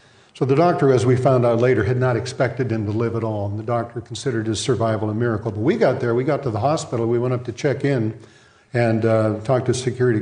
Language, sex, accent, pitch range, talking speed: English, male, American, 110-130 Hz, 265 wpm